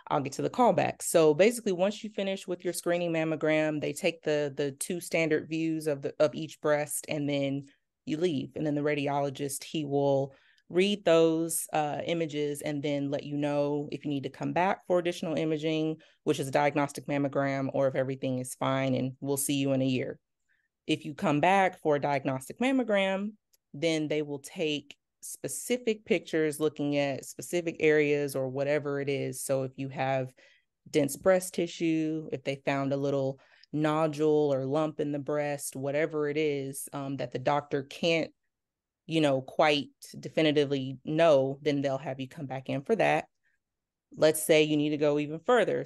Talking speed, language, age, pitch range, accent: 185 wpm, English, 30-49, 140-160 Hz, American